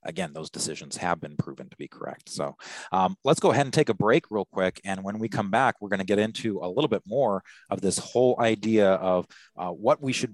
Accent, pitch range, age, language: American, 95-150 Hz, 30-49, English